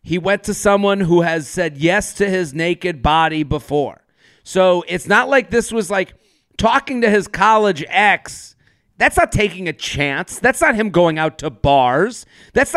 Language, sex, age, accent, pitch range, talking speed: English, male, 40-59, American, 160-210 Hz, 180 wpm